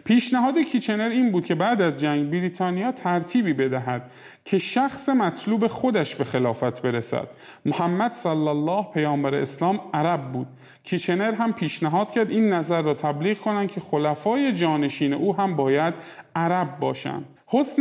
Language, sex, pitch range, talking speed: Persian, male, 145-210 Hz, 145 wpm